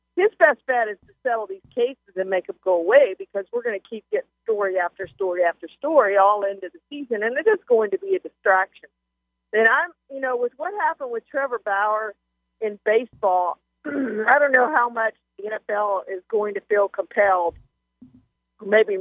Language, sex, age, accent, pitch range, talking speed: English, female, 50-69, American, 195-290 Hz, 195 wpm